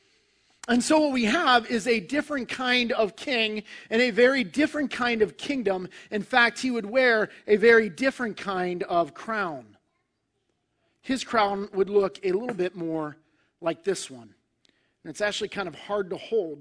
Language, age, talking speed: English, 40-59, 175 wpm